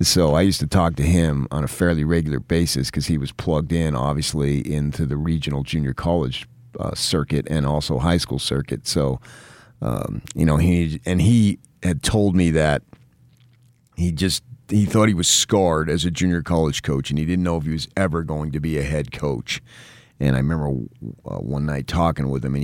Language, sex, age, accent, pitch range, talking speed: English, male, 40-59, American, 75-95 Hz, 205 wpm